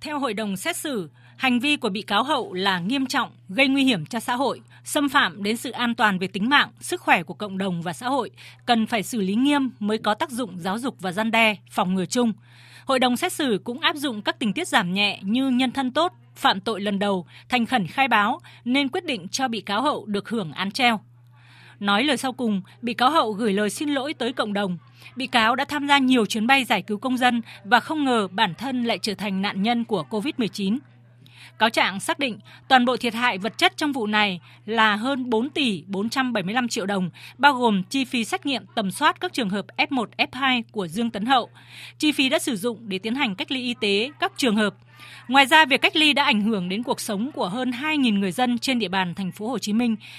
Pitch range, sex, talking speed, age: 200-265 Hz, female, 245 wpm, 20-39